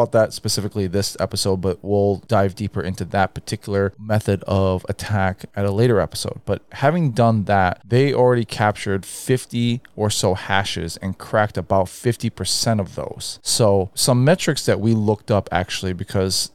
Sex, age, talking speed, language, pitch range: male, 20-39, 160 wpm, English, 95-115 Hz